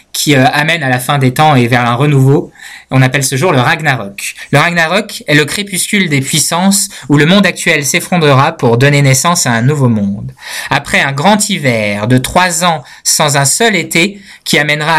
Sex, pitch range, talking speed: male, 130-170 Hz, 195 wpm